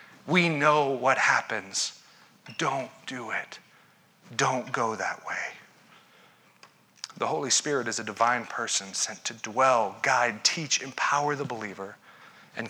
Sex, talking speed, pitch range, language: male, 130 wpm, 130-165 Hz, English